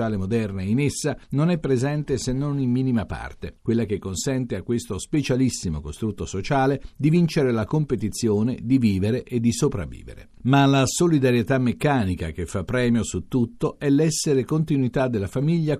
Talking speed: 160 wpm